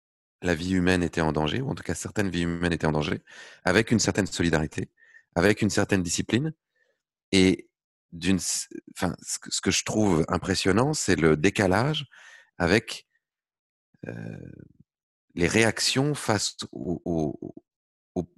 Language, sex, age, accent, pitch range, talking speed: French, male, 30-49, French, 85-105 Hz, 135 wpm